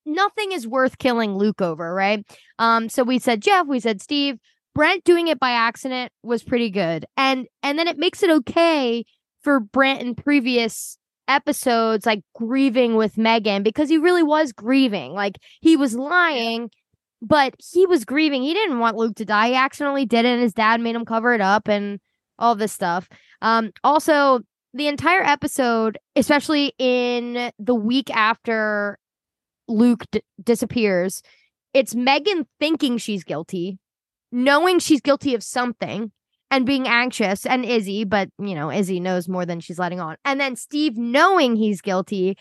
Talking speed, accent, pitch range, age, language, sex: 165 wpm, American, 220-280 Hz, 10-29, English, female